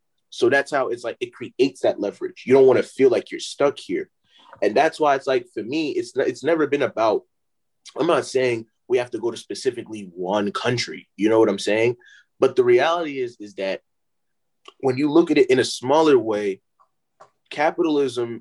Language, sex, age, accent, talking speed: English, male, 20-39, American, 200 wpm